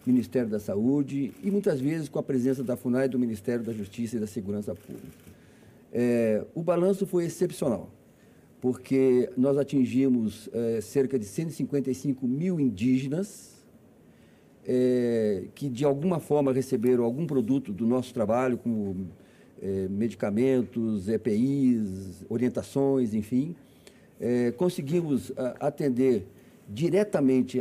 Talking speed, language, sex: 110 wpm, Portuguese, male